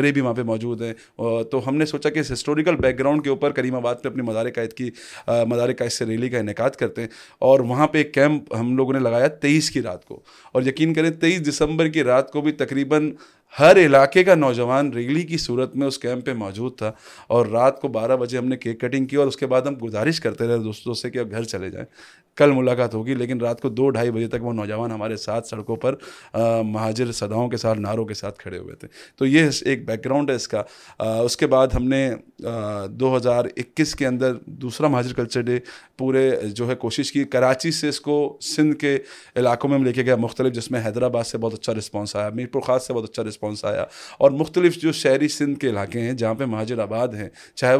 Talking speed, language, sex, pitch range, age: 230 wpm, Urdu, male, 115-140 Hz, 30-49